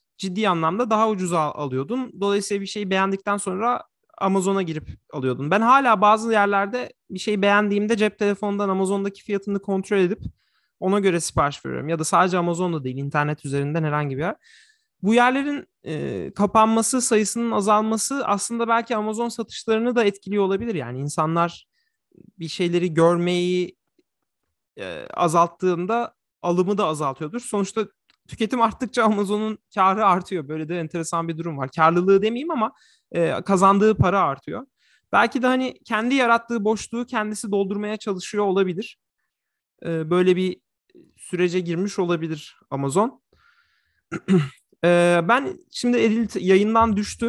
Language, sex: Turkish, male